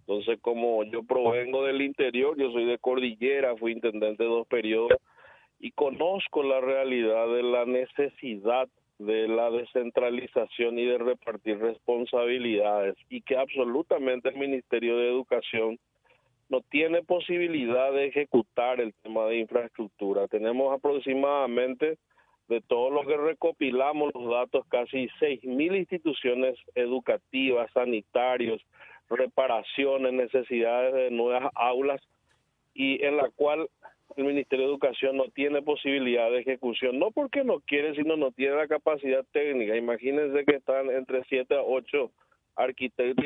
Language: Spanish